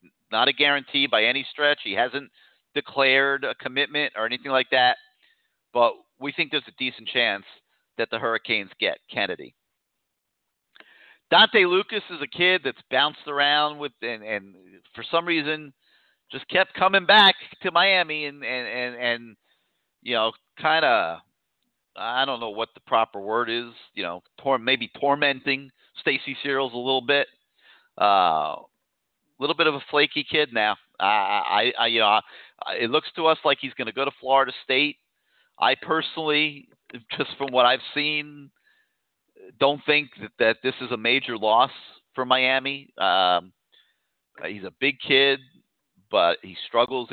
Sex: male